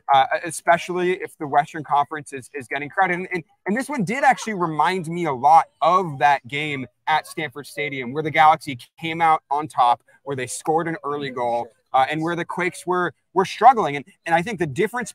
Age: 30-49